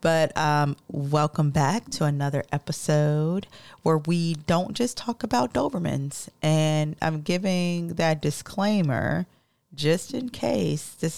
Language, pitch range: English, 145-175 Hz